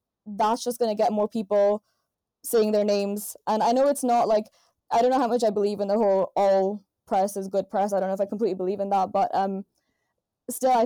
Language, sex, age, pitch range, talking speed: English, female, 10-29, 195-230 Hz, 240 wpm